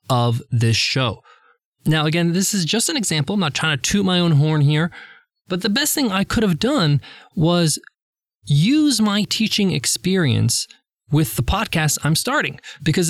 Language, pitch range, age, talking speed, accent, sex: English, 130-205 Hz, 20-39, 175 wpm, American, male